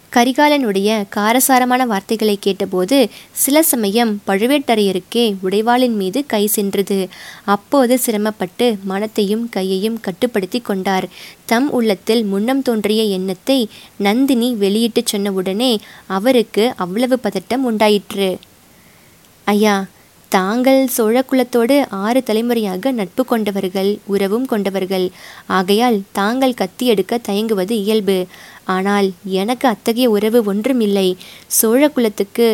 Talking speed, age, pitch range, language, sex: 95 wpm, 20-39, 195-235 Hz, Tamil, female